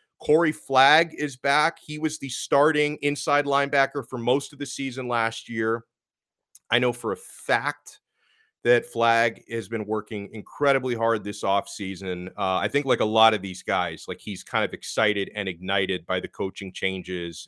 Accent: American